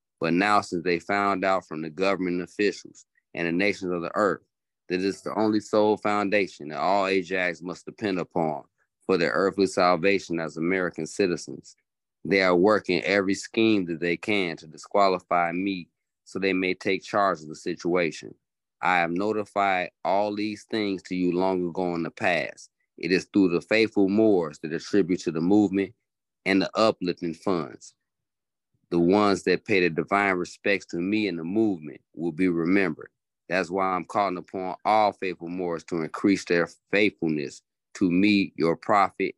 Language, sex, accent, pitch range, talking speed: English, male, American, 85-100 Hz, 170 wpm